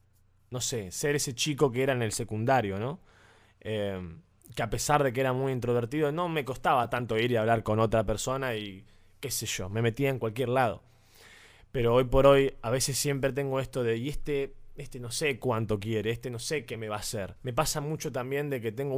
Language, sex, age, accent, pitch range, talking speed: Spanish, male, 20-39, Argentinian, 115-150 Hz, 225 wpm